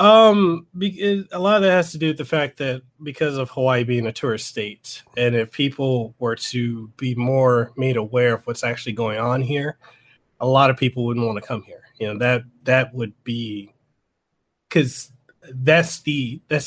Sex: male